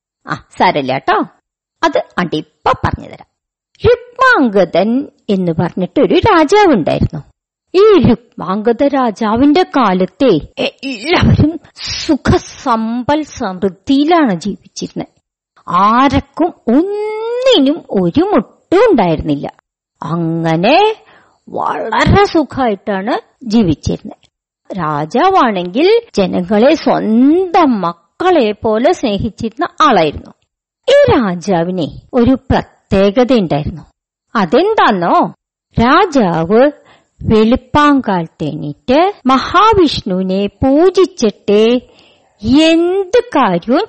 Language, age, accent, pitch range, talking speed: Malayalam, 50-69, native, 200-325 Hz, 65 wpm